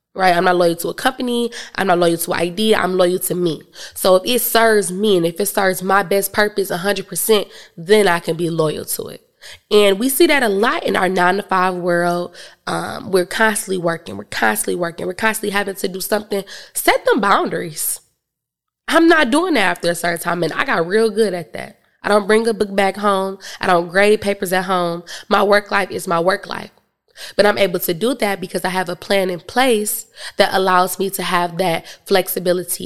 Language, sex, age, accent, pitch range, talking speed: English, female, 20-39, American, 180-215 Hz, 220 wpm